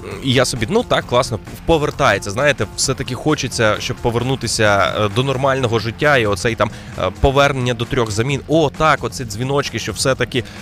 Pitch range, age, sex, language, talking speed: 105-140 Hz, 20-39, male, Ukrainian, 160 wpm